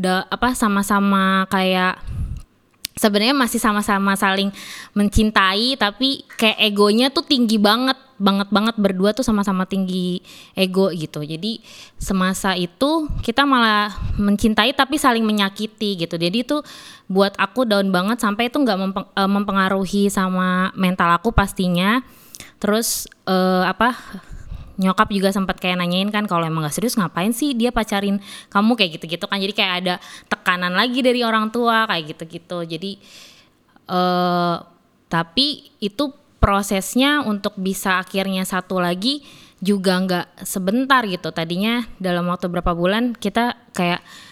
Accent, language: native, Indonesian